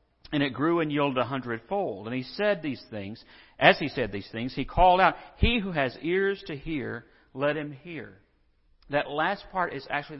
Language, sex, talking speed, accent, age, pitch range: English, male, 200 wpm, American, 50-69, 115-190 Hz